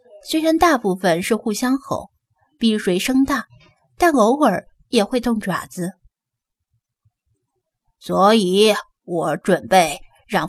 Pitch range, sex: 175-235 Hz, female